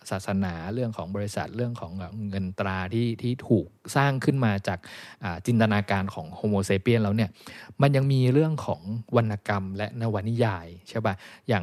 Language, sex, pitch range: Thai, male, 105-135 Hz